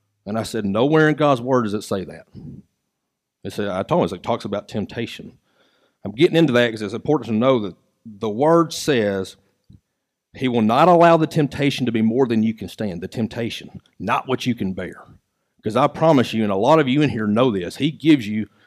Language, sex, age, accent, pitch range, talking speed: English, male, 40-59, American, 105-135 Hz, 225 wpm